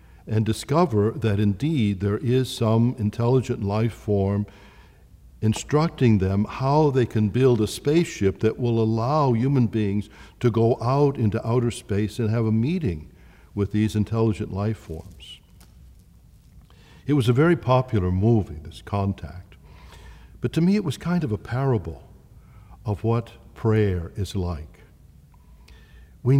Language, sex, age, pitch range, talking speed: English, male, 60-79, 90-115 Hz, 140 wpm